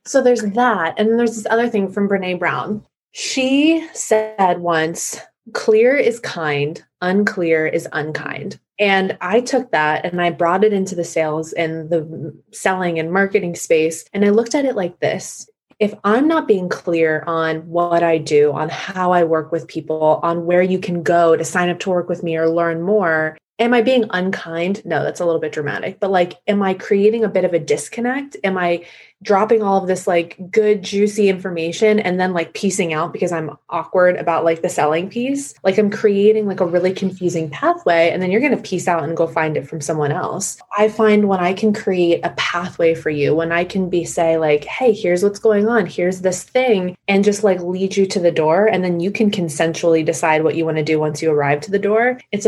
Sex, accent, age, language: female, American, 20-39, English